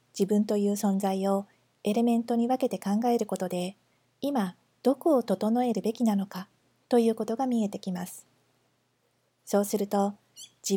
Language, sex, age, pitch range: Japanese, female, 40-59, 195-245 Hz